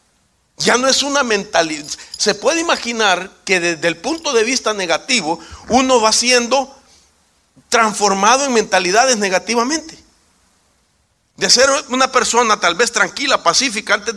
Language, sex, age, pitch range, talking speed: English, male, 50-69, 180-250 Hz, 130 wpm